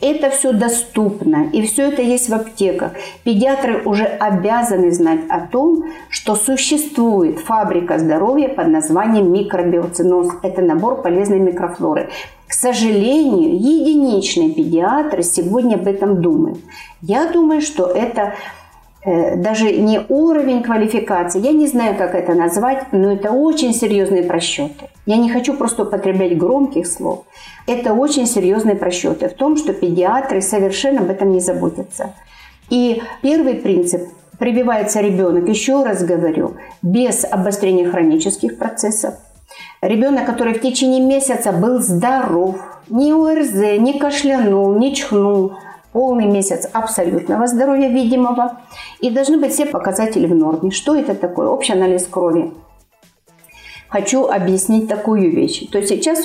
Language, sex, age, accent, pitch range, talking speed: Russian, female, 50-69, native, 190-275 Hz, 130 wpm